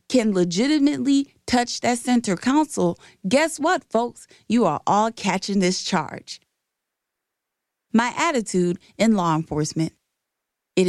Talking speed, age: 115 wpm, 30-49